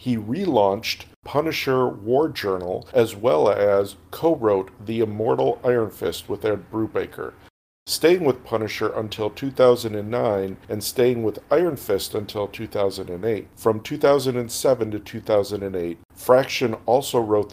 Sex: male